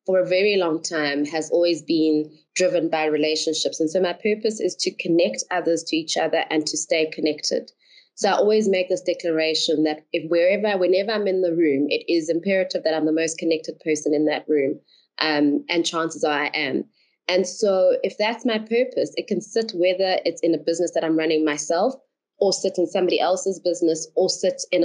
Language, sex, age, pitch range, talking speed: English, female, 20-39, 155-185 Hz, 205 wpm